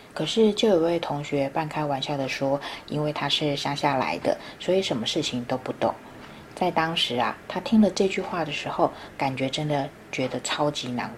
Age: 20-39